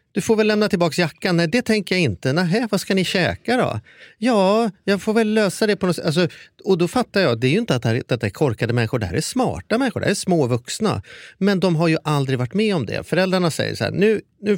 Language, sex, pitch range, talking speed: Swedish, male, 115-185 Hz, 265 wpm